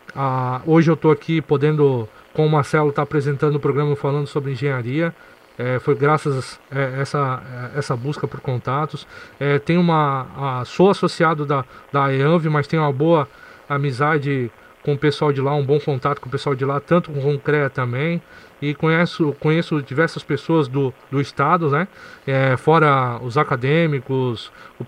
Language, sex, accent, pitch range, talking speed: Portuguese, male, Brazilian, 135-155 Hz, 180 wpm